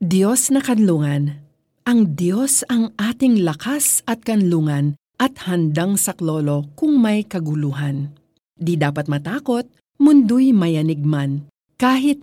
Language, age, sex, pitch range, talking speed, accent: Filipino, 40-59, female, 155-230 Hz, 115 wpm, native